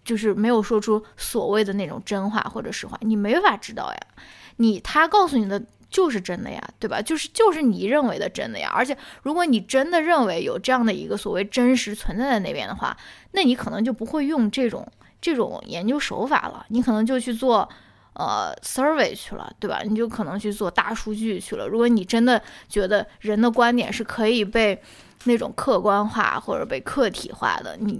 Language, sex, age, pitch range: Chinese, female, 10-29, 210-250 Hz